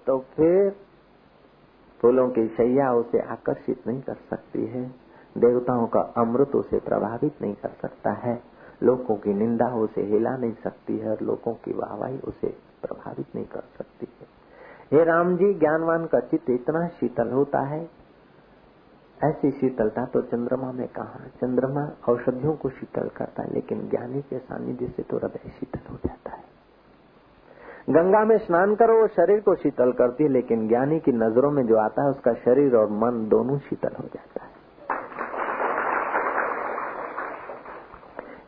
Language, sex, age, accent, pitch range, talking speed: Hindi, male, 50-69, native, 125-195 Hz, 145 wpm